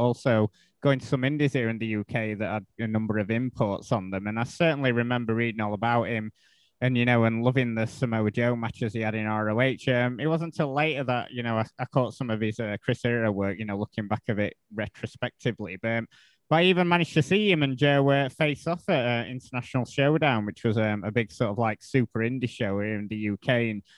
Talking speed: 245 wpm